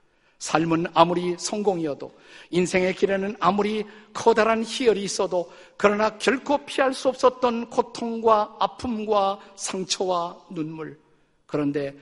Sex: male